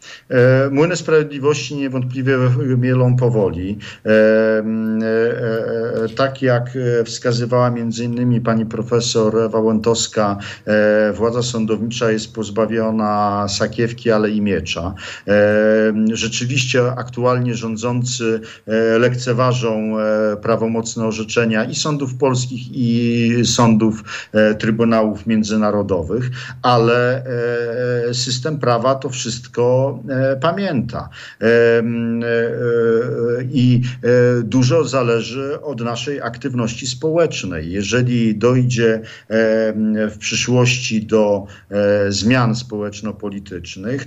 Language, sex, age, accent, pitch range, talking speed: Polish, male, 50-69, native, 110-125 Hz, 80 wpm